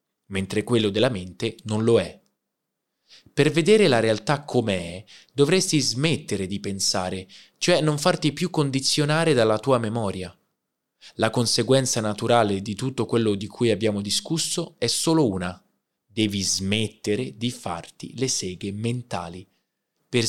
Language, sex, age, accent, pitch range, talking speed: Italian, male, 20-39, native, 105-140 Hz, 135 wpm